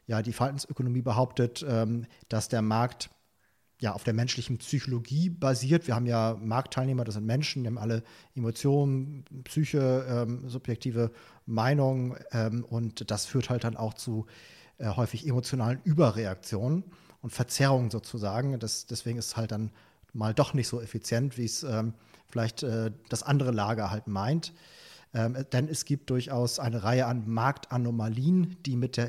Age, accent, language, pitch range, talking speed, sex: 40-59, German, German, 115-130 Hz, 145 wpm, male